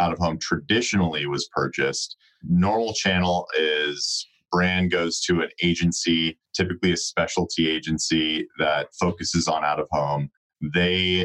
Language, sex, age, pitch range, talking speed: English, male, 30-49, 80-90 Hz, 110 wpm